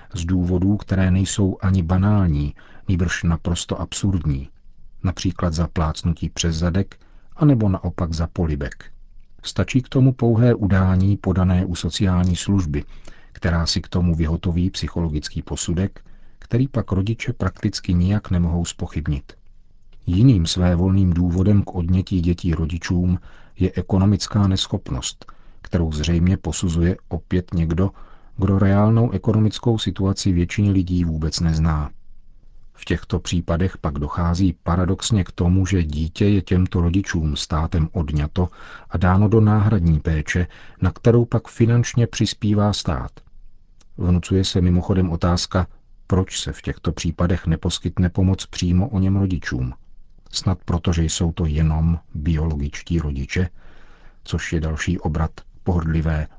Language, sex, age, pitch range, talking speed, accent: Czech, male, 40-59, 85-100 Hz, 125 wpm, native